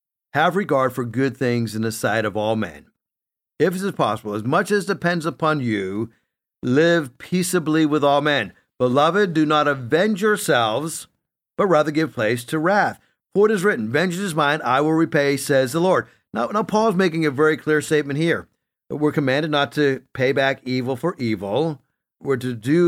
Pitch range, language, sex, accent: 130-160 Hz, English, male, American